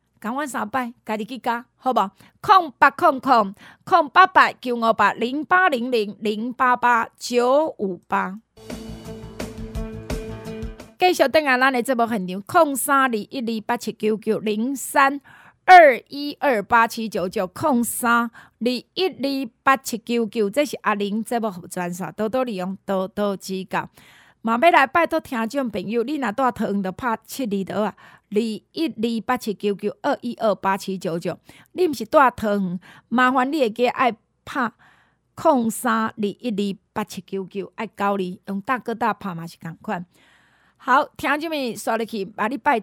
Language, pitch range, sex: Chinese, 200-275 Hz, female